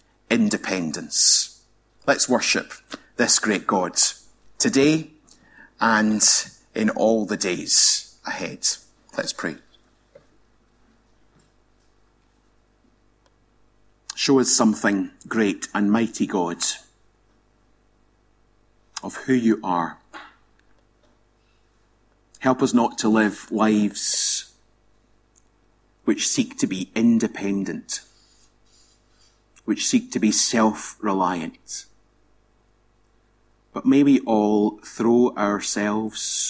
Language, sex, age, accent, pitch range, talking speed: English, male, 40-59, British, 105-115 Hz, 80 wpm